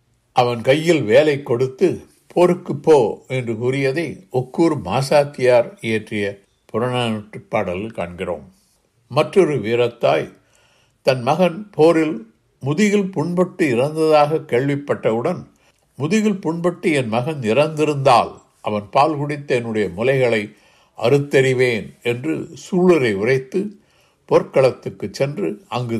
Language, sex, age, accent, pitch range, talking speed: Tamil, male, 60-79, native, 115-155 Hz, 90 wpm